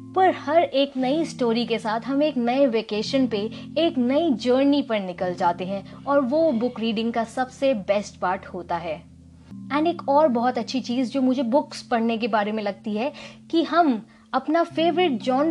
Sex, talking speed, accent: female, 125 wpm, native